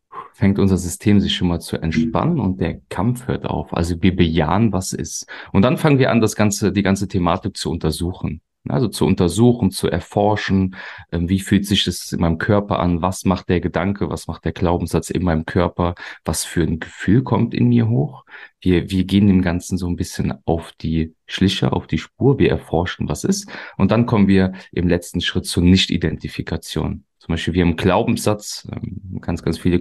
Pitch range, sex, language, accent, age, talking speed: 85-105 Hz, male, German, German, 30-49, 195 wpm